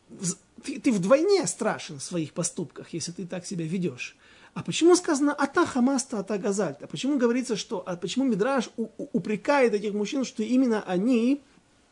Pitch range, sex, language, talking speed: 180-235 Hz, male, Russian, 155 wpm